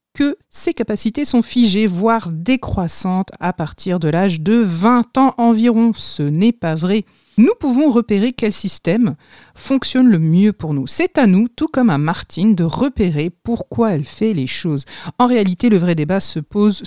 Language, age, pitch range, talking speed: French, 50-69, 175-235 Hz, 180 wpm